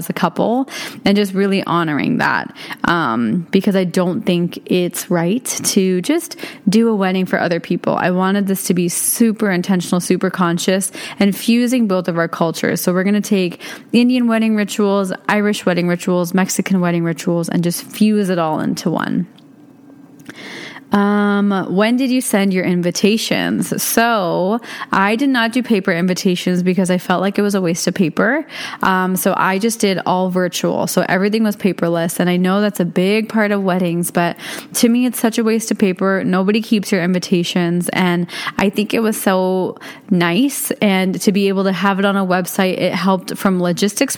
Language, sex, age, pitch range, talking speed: English, female, 20-39, 180-215 Hz, 185 wpm